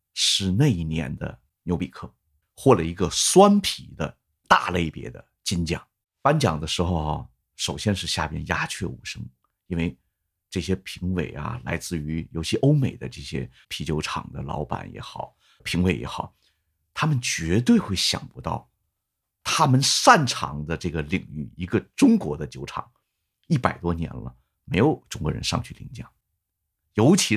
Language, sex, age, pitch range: Chinese, male, 50-69, 80-110 Hz